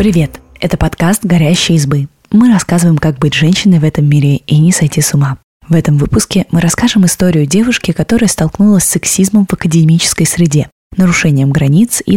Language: Russian